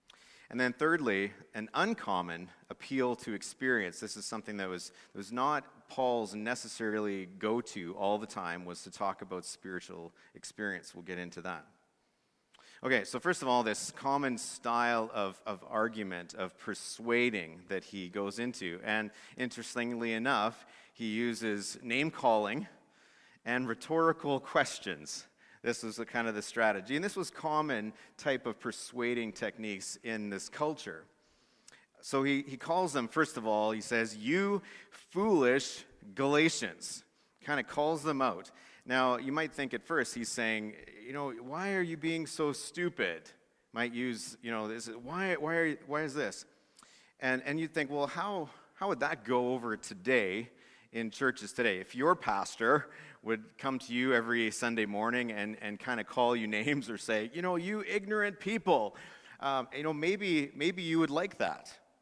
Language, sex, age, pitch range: English, male, 30-49, 110-145 Hz